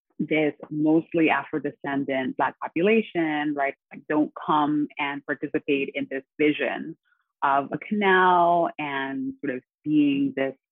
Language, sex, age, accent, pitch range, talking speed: English, female, 30-49, American, 140-175 Hz, 120 wpm